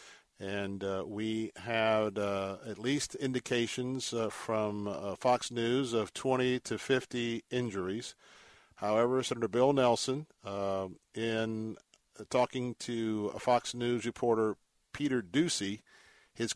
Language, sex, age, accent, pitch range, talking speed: English, male, 50-69, American, 105-125 Hz, 120 wpm